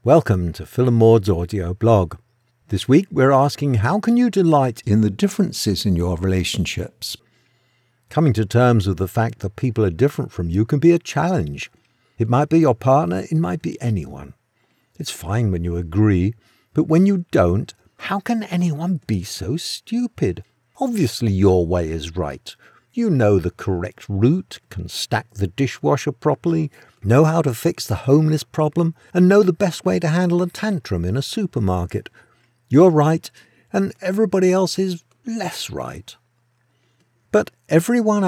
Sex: male